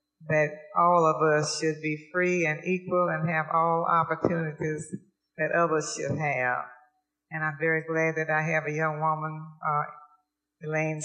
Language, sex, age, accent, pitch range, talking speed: English, female, 60-79, American, 155-175 Hz, 160 wpm